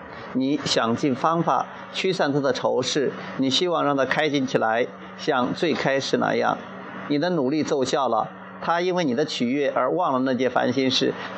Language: Chinese